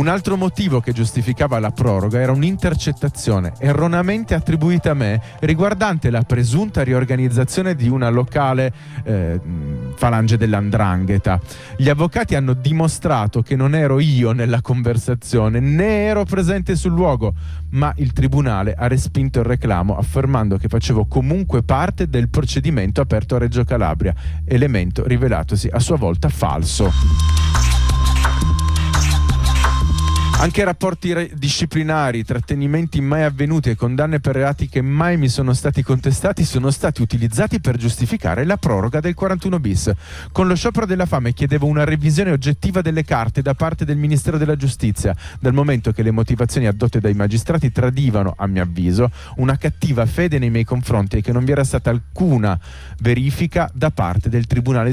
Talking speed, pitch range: 145 wpm, 110-150 Hz